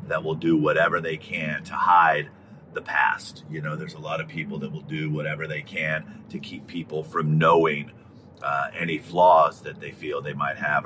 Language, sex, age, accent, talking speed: English, male, 40-59, American, 205 wpm